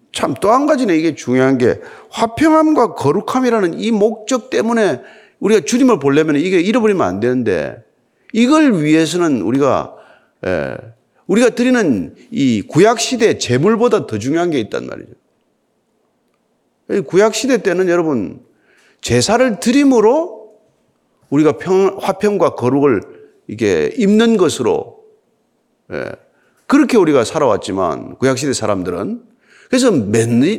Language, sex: Korean, male